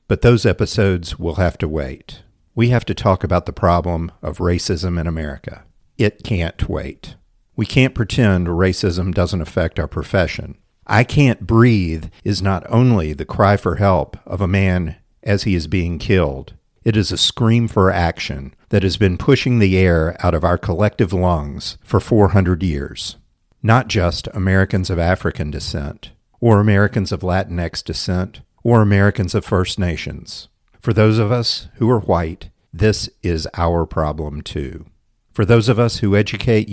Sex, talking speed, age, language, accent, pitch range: male, 165 wpm, 50-69, English, American, 85-105 Hz